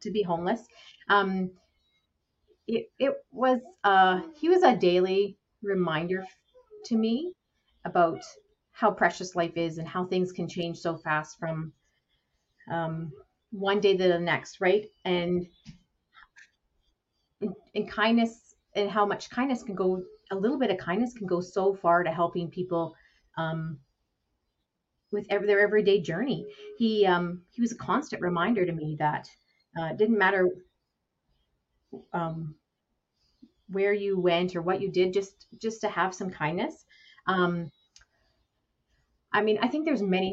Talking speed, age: 145 wpm, 30-49